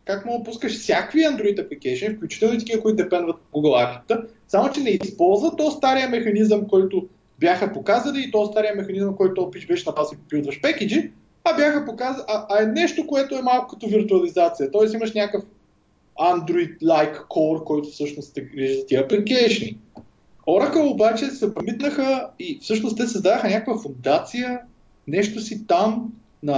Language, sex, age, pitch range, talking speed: Bulgarian, male, 20-39, 155-240 Hz, 165 wpm